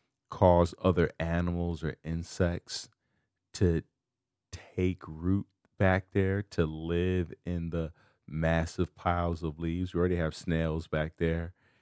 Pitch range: 85-105 Hz